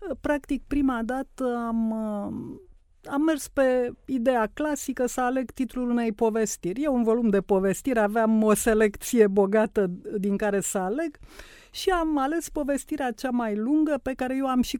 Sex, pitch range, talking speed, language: female, 210-275 Hz, 160 wpm, Romanian